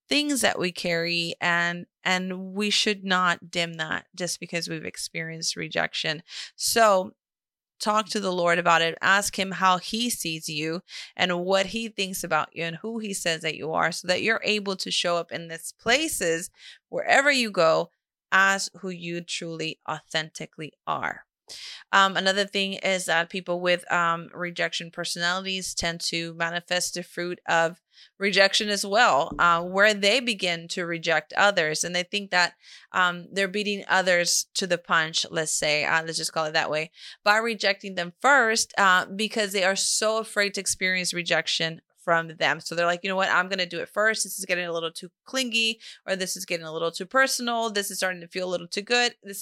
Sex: female